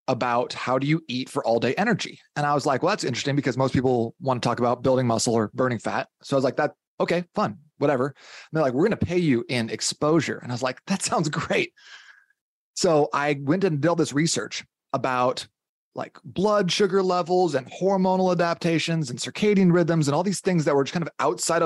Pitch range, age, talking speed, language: 130-170 Hz, 30-49, 225 wpm, English